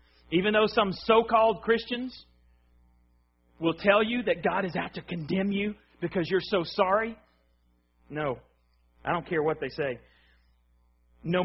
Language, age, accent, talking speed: English, 40-59, American, 140 wpm